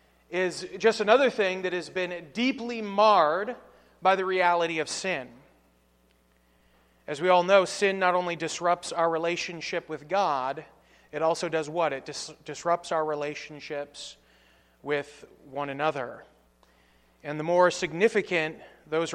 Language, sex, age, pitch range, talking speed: English, male, 30-49, 150-195 Hz, 130 wpm